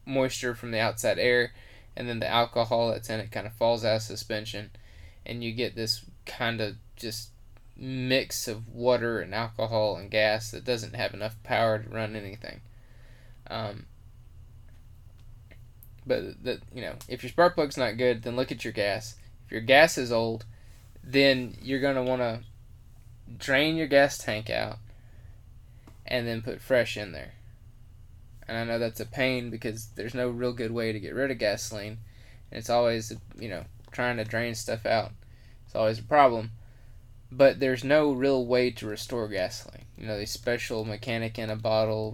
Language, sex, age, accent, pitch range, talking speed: English, male, 20-39, American, 110-120 Hz, 180 wpm